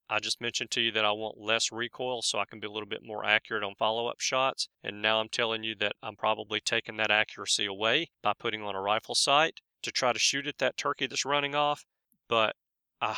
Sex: male